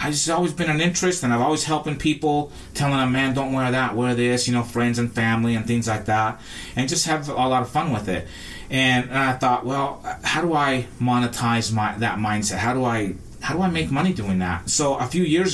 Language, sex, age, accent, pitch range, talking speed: English, male, 30-49, American, 105-130 Hz, 245 wpm